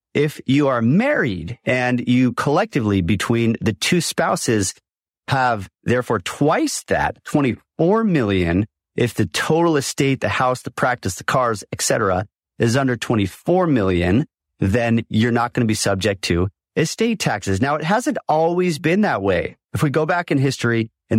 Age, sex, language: 40-59, male, English